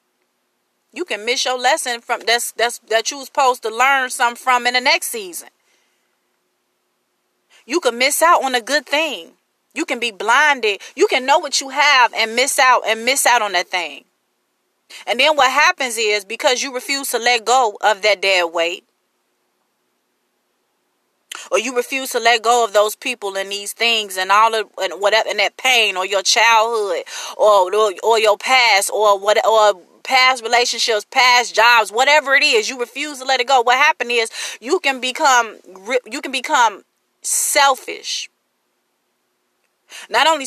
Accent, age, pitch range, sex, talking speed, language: American, 30-49, 220-280 Hz, female, 175 wpm, English